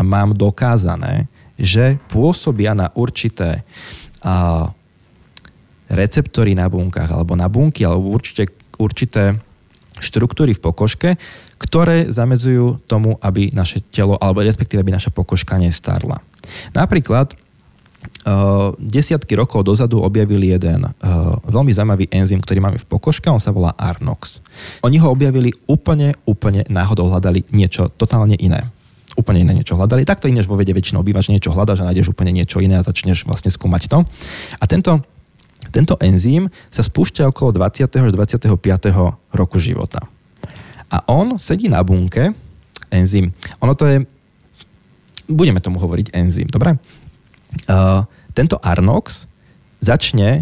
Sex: male